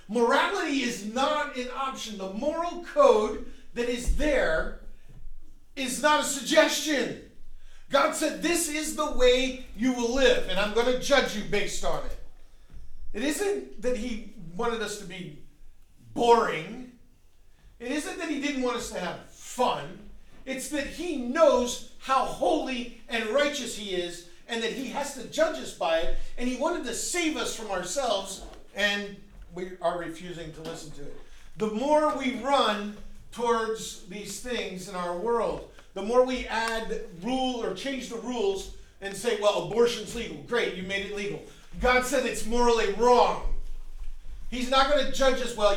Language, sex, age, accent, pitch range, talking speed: English, male, 50-69, American, 205-285 Hz, 170 wpm